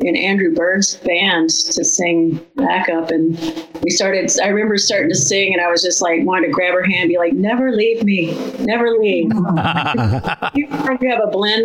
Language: English